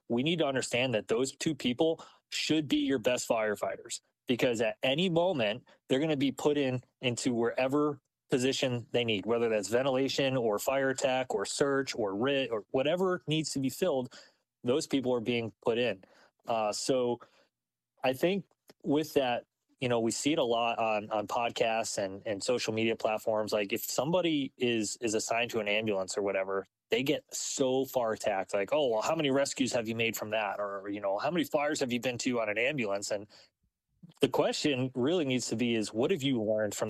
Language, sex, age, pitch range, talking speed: English, male, 20-39, 110-140 Hz, 200 wpm